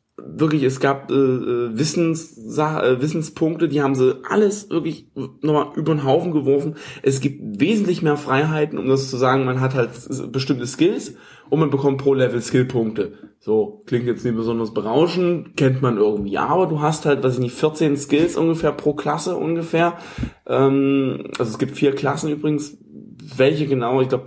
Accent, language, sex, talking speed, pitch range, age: German, German, male, 170 wpm, 130-155 Hz, 20-39